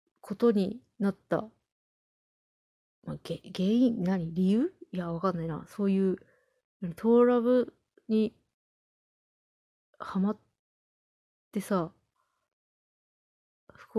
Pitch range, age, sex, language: 180-230 Hz, 20-39, female, Japanese